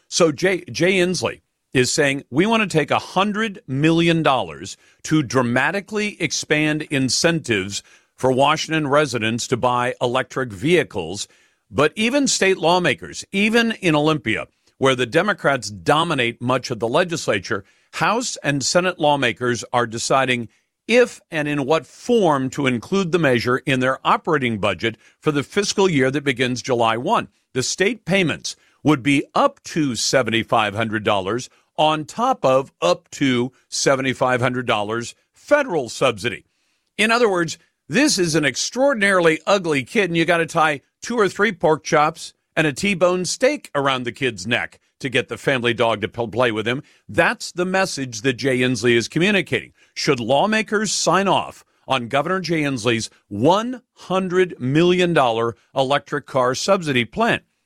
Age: 50-69